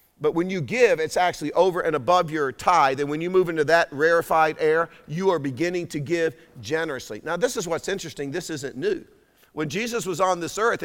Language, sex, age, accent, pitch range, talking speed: English, male, 50-69, American, 150-190 Hz, 215 wpm